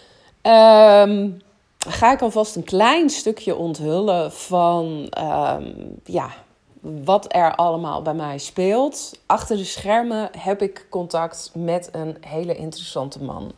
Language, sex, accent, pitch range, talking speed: Dutch, female, Dutch, 155-190 Hz, 110 wpm